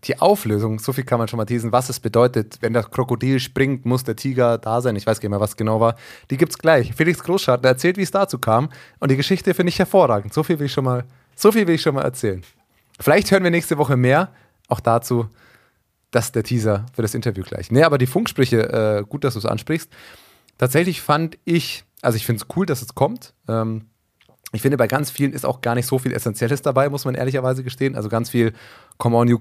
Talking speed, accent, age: 245 wpm, German, 30-49